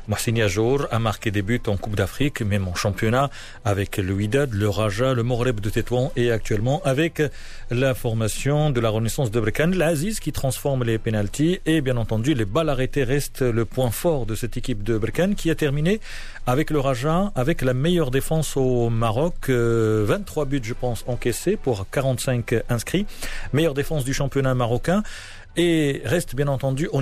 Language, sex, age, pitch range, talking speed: Arabic, male, 40-59, 115-150 Hz, 180 wpm